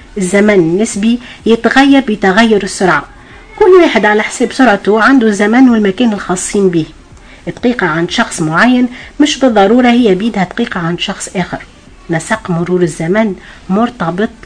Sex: female